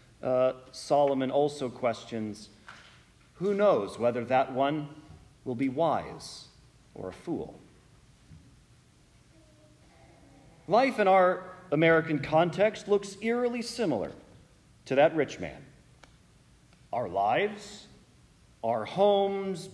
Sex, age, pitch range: male, 40-59, 145-205 Hz